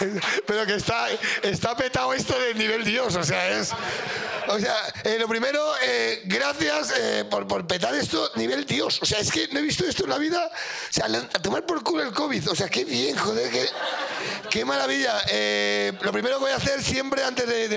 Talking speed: 215 wpm